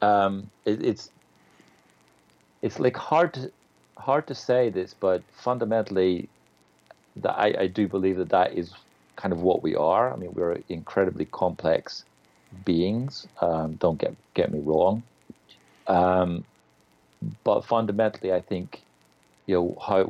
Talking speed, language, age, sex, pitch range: 135 wpm, English, 50-69, male, 75-95 Hz